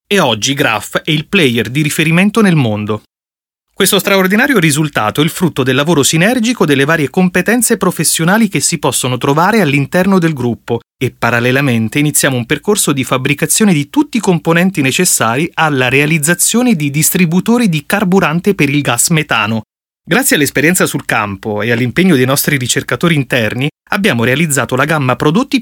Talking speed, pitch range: 155 wpm, 130-180 Hz